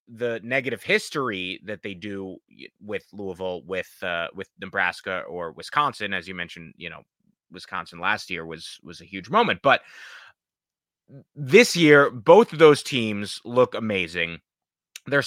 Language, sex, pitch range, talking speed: English, male, 105-155 Hz, 145 wpm